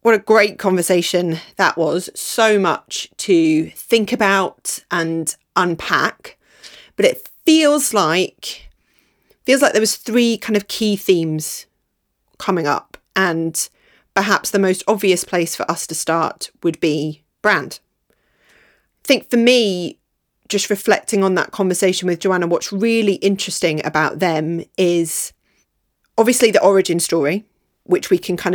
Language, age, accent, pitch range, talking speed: English, 30-49, British, 170-215 Hz, 140 wpm